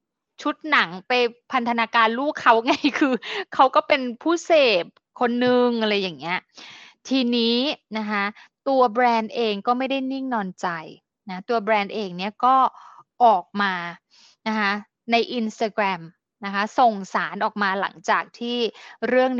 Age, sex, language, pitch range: 20-39, female, English, 200-245 Hz